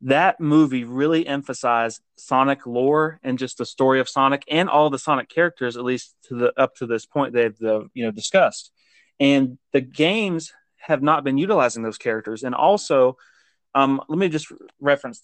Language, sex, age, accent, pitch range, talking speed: English, male, 30-49, American, 125-145 Hz, 180 wpm